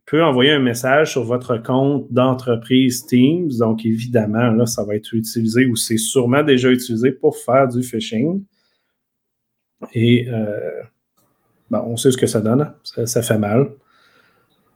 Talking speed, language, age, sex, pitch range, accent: 155 wpm, French, 40-59, male, 120-155 Hz, Canadian